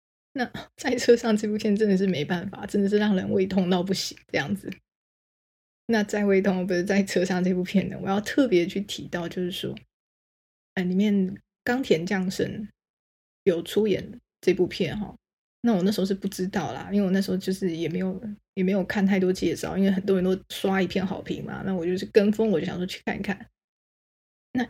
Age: 20-39